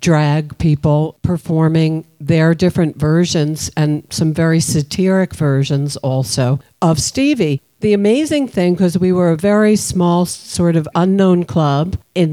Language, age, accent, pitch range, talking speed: English, 60-79, American, 150-180 Hz, 135 wpm